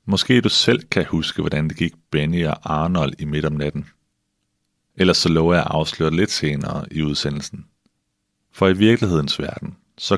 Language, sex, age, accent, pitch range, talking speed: Danish, male, 30-49, native, 75-95 Hz, 175 wpm